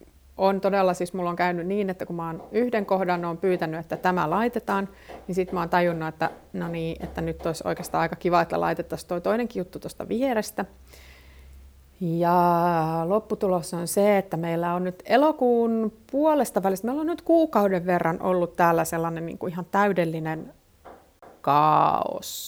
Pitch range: 170-210 Hz